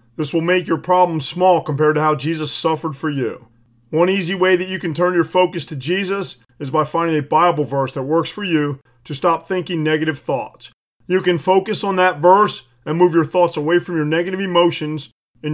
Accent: American